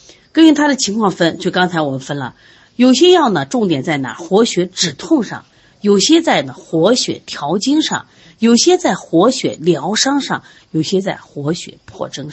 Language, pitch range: Chinese, 160-260 Hz